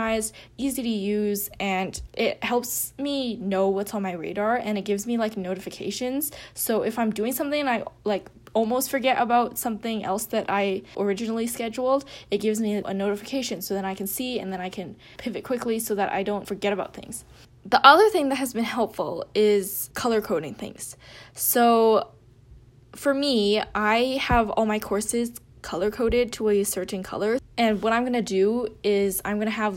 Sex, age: female, 10-29